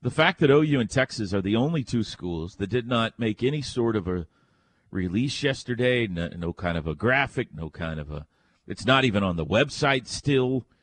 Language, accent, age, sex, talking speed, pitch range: English, American, 40-59, male, 210 wpm, 100-150 Hz